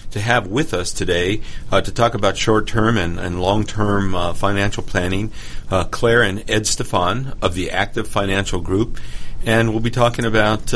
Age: 50-69